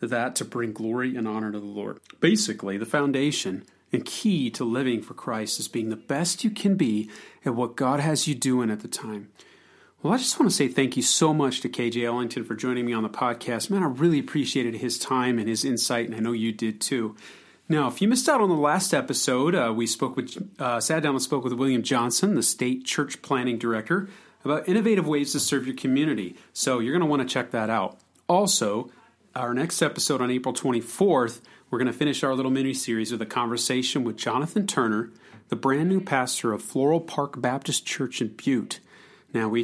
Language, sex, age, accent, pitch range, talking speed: English, male, 40-59, American, 115-145 Hz, 215 wpm